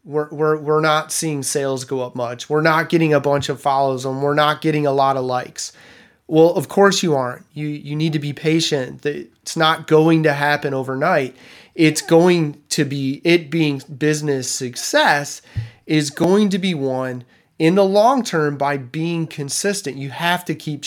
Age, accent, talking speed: 30-49, American, 185 wpm